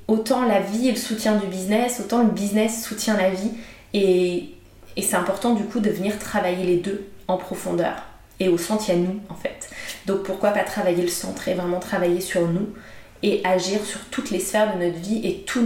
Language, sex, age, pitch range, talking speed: English, female, 20-39, 175-210 Hz, 220 wpm